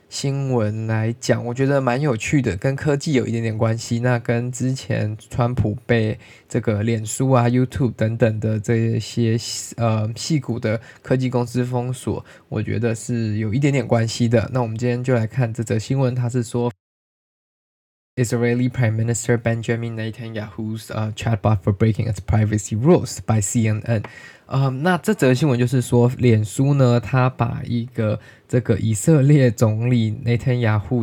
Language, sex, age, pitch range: Chinese, male, 20-39, 110-125 Hz